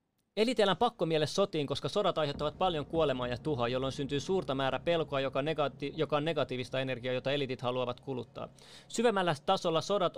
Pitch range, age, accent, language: 130-165 Hz, 30-49, native, Finnish